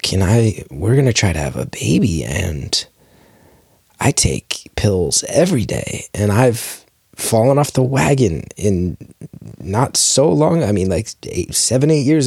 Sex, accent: male, American